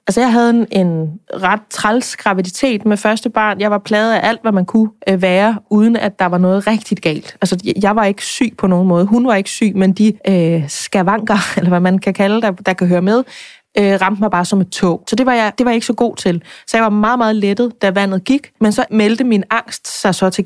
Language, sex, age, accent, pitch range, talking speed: Danish, female, 20-39, native, 190-225 Hz, 260 wpm